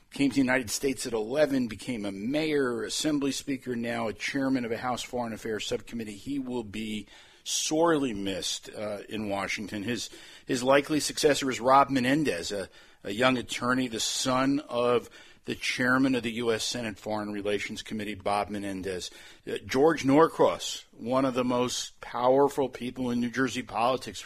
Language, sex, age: English, male, 50-69